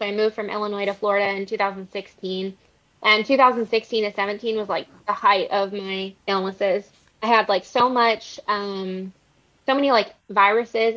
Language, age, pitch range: English, 20-39, 200-230 Hz